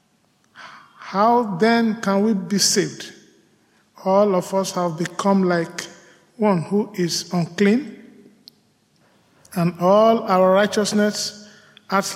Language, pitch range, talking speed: English, 170-205 Hz, 105 wpm